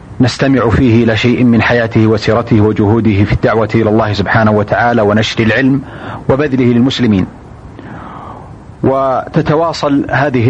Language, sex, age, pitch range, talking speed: Arabic, male, 40-59, 110-130 Hz, 110 wpm